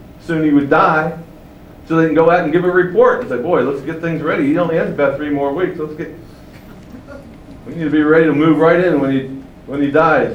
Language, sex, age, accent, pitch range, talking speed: English, male, 60-79, American, 130-170 Hz, 250 wpm